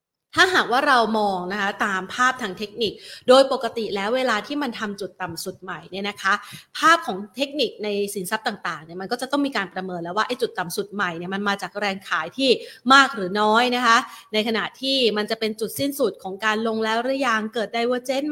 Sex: female